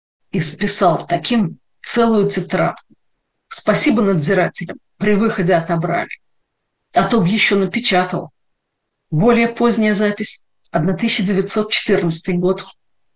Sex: female